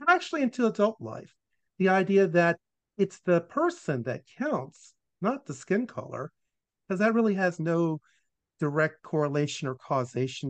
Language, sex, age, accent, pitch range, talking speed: English, male, 50-69, American, 135-200 Hz, 145 wpm